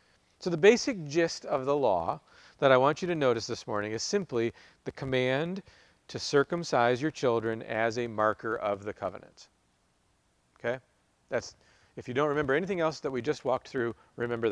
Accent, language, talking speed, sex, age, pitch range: American, English, 180 wpm, male, 40-59, 120-160 Hz